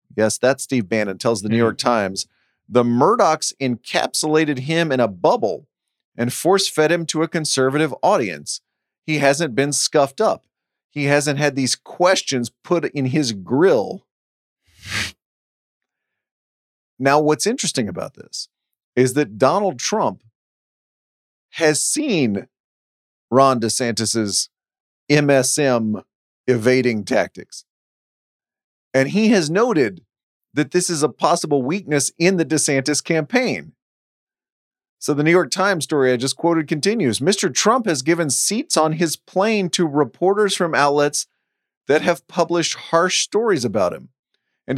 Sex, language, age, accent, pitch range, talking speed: male, English, 40-59, American, 130-170 Hz, 130 wpm